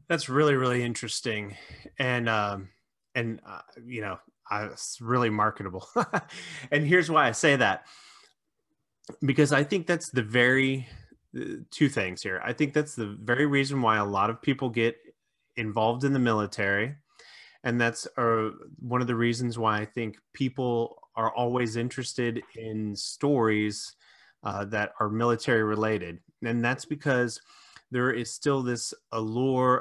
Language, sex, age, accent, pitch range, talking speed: English, male, 30-49, American, 110-130 Hz, 150 wpm